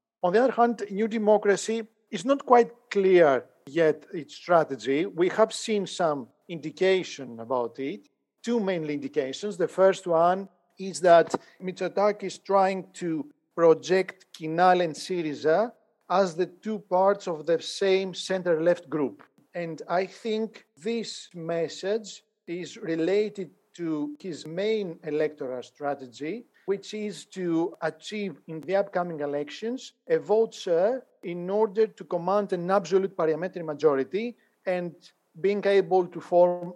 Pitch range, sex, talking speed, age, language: 165-205 Hz, male, 130 wpm, 50-69, English